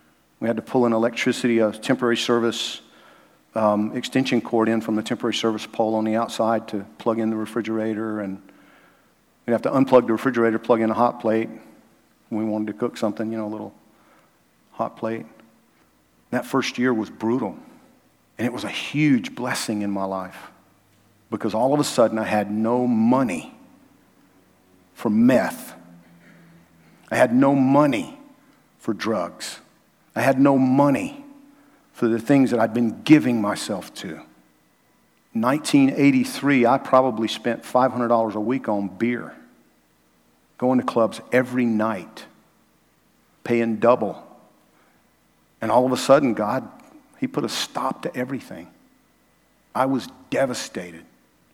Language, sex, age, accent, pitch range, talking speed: English, male, 50-69, American, 110-130 Hz, 145 wpm